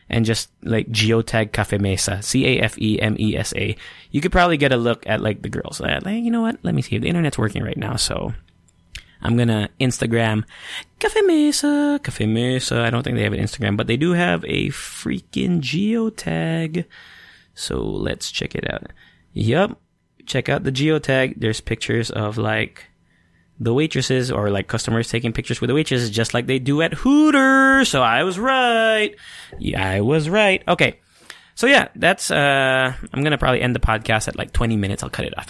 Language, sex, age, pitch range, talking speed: English, male, 20-39, 110-165 Hz, 190 wpm